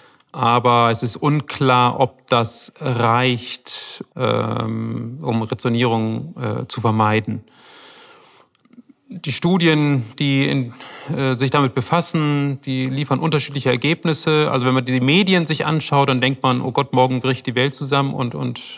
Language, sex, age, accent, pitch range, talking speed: German, male, 40-59, German, 120-145 Hz, 135 wpm